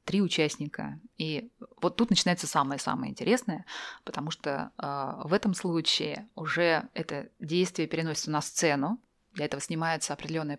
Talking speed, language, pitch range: 135 wpm, Russian, 155-205 Hz